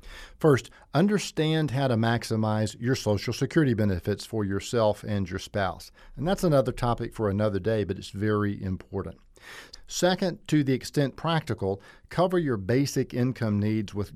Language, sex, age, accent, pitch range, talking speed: English, male, 50-69, American, 100-140 Hz, 155 wpm